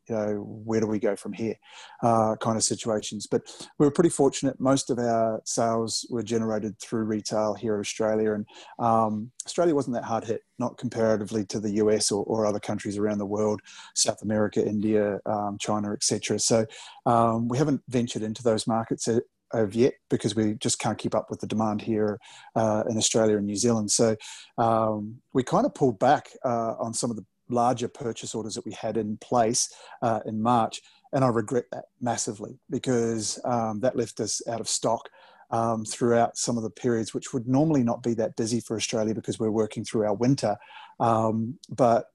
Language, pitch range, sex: English, 110-120 Hz, male